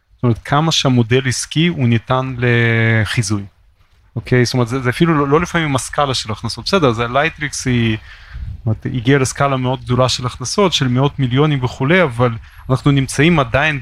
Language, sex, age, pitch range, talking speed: Hebrew, male, 30-49, 115-145 Hz, 175 wpm